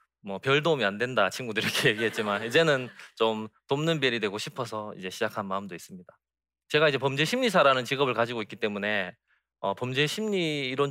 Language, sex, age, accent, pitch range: Korean, male, 20-39, native, 110-180 Hz